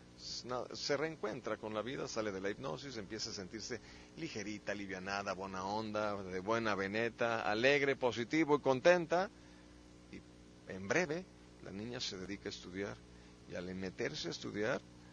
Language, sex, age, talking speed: Spanish, male, 40-59, 145 wpm